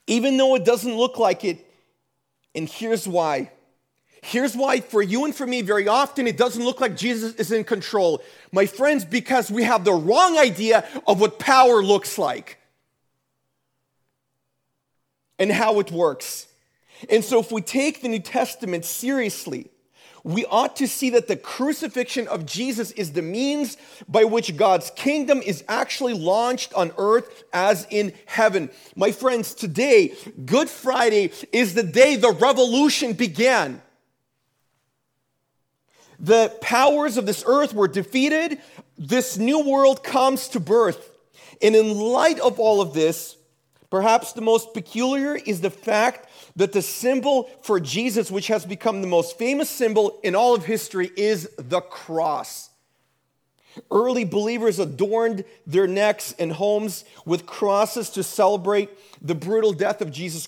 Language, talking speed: English, 150 wpm